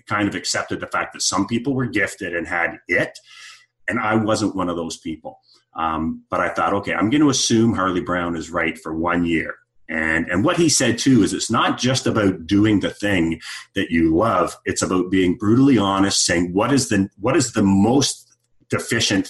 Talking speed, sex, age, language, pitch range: 210 wpm, male, 30-49, English, 80-105 Hz